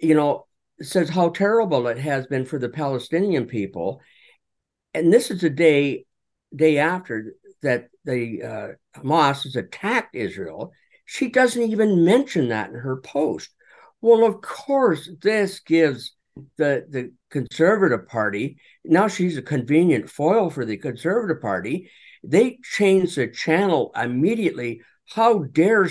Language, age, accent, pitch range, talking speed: English, 50-69, American, 130-190 Hz, 135 wpm